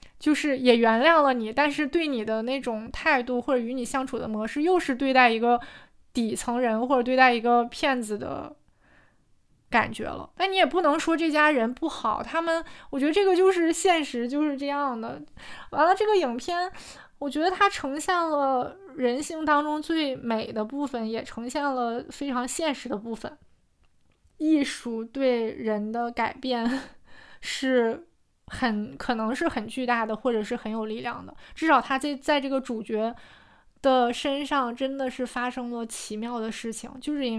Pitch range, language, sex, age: 235-300 Hz, Chinese, female, 20-39